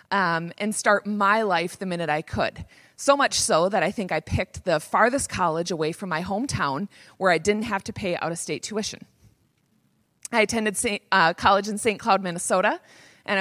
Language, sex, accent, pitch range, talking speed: English, female, American, 175-220 Hz, 185 wpm